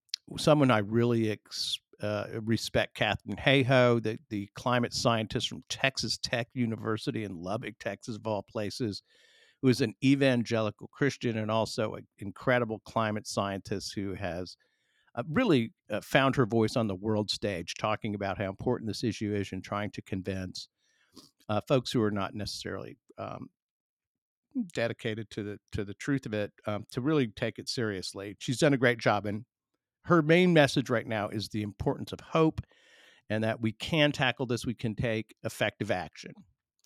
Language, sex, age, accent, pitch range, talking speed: English, male, 50-69, American, 105-125 Hz, 170 wpm